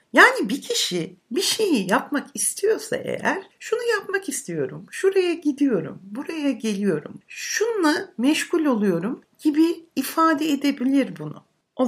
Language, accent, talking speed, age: Turkish, native, 115 wpm, 60-79